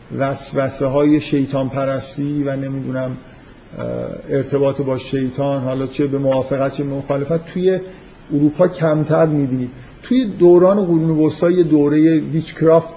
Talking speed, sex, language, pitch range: 110 wpm, male, Persian, 135-155 Hz